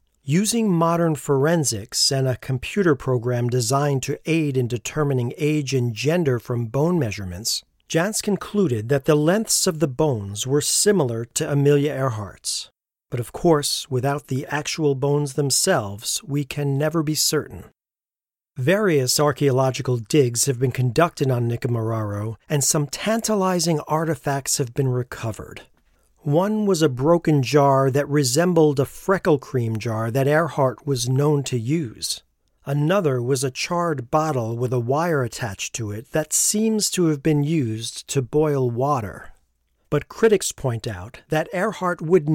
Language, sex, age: English, male, 40-59